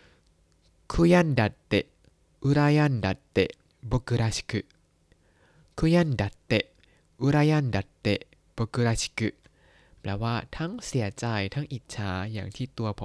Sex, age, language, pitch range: male, 20-39, Thai, 105-140 Hz